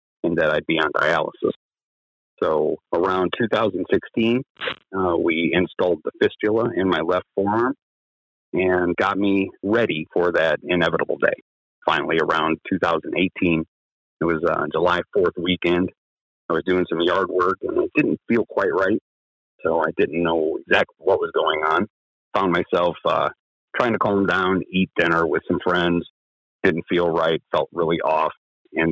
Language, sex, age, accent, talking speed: English, male, 40-59, American, 155 wpm